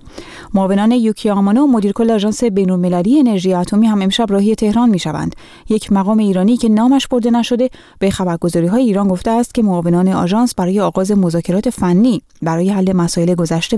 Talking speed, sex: 155 wpm, female